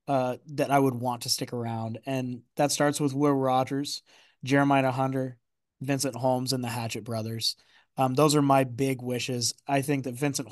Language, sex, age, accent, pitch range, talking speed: English, male, 20-39, American, 120-140 Hz, 185 wpm